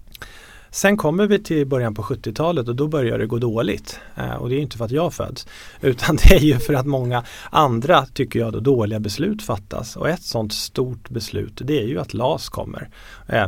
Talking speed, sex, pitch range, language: 220 wpm, male, 110-140 Hz, Swedish